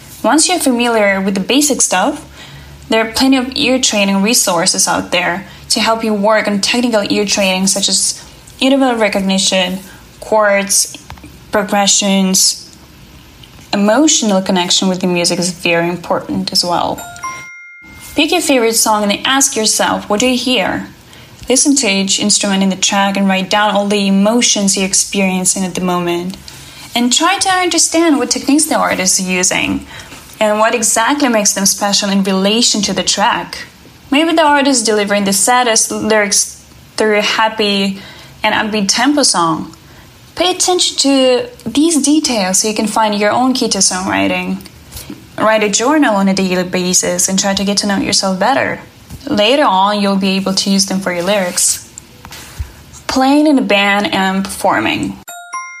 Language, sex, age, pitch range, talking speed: English, female, 10-29, 195-255 Hz, 160 wpm